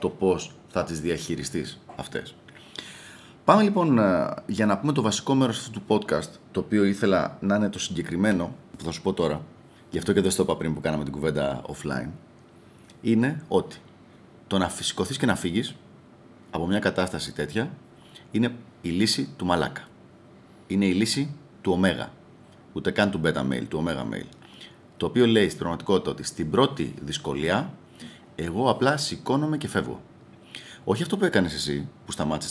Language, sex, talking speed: Greek, male, 170 wpm